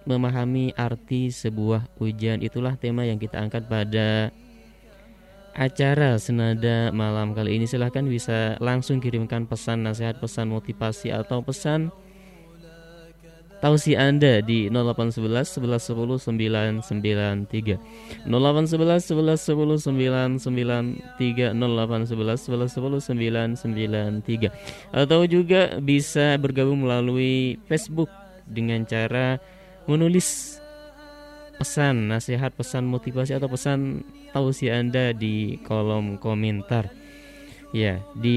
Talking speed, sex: 90 wpm, male